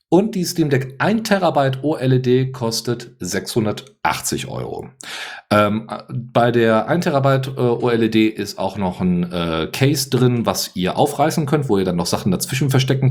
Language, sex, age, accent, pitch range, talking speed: German, male, 40-59, German, 95-130 Hz, 165 wpm